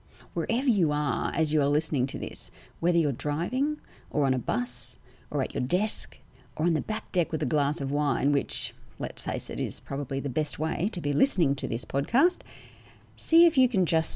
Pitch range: 130-185 Hz